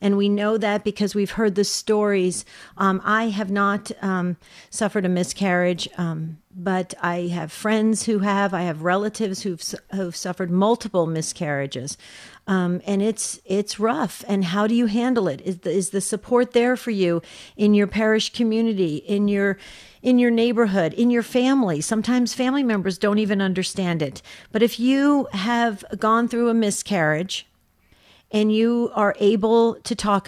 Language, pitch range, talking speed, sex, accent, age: English, 180-220 Hz, 165 wpm, female, American, 50-69